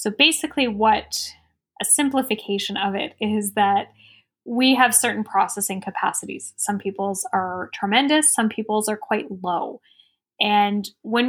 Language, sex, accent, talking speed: English, female, American, 135 wpm